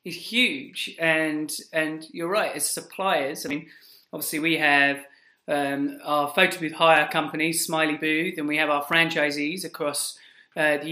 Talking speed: 160 wpm